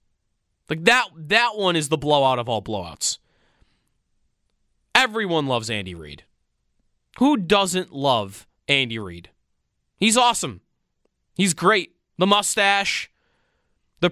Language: English